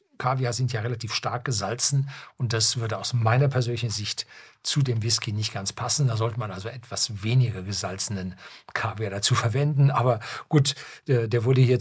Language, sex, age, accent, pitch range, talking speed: German, male, 50-69, German, 110-130 Hz, 175 wpm